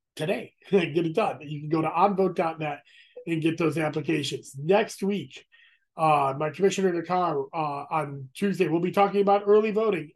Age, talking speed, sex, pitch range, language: 30-49, 170 wpm, male, 145-185 Hz, English